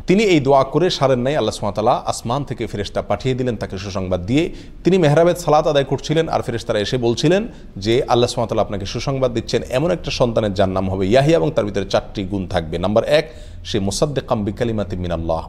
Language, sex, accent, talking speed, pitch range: Bengali, male, native, 45 wpm, 100-140 Hz